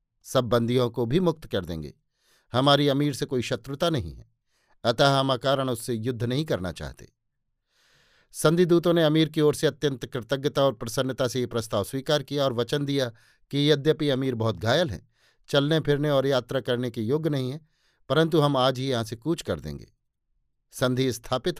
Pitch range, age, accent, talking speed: 120-145 Hz, 50-69, native, 185 wpm